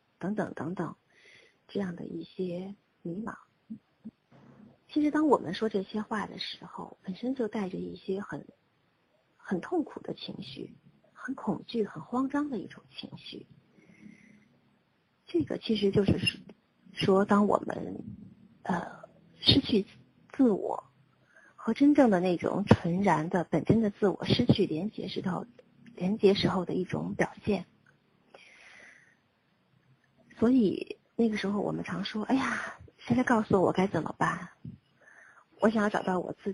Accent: native